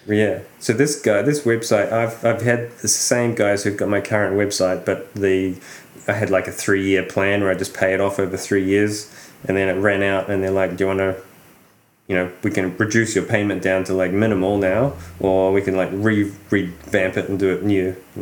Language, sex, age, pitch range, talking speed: English, male, 20-39, 95-105 Hz, 230 wpm